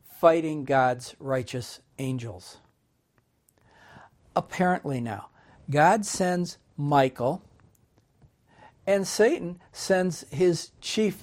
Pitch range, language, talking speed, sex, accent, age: 135-190 Hz, English, 75 wpm, male, American, 60-79